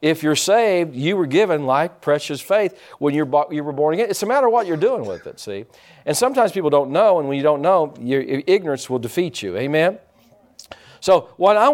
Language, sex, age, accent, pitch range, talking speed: English, male, 50-69, American, 155-225 Hz, 220 wpm